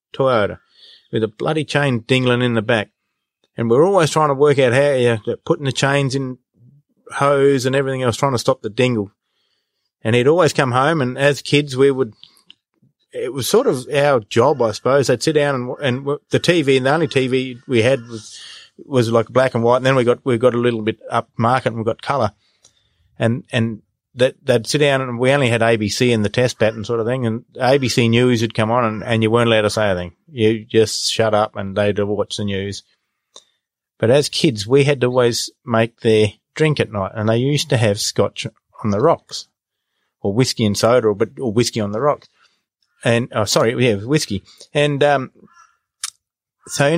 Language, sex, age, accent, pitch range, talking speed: English, male, 30-49, Australian, 110-135 Hz, 210 wpm